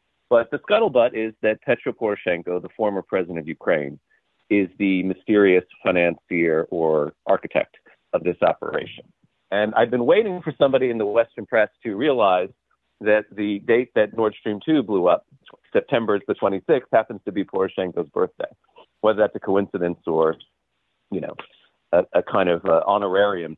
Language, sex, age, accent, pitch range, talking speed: English, male, 40-59, American, 90-115 Hz, 160 wpm